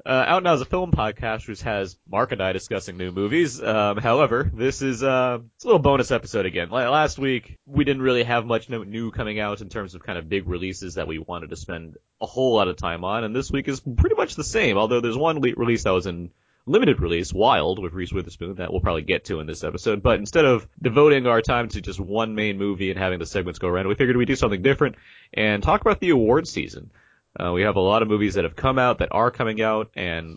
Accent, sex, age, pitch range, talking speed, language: American, male, 30-49, 90-120 Hz, 260 wpm, English